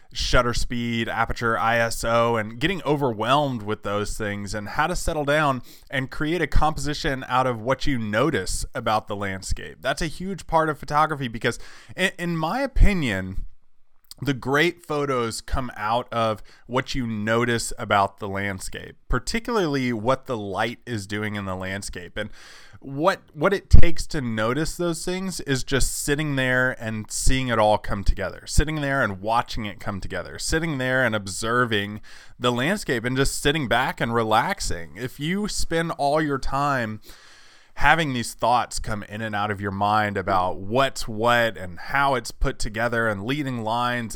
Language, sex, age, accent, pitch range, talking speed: English, male, 20-39, American, 105-145 Hz, 170 wpm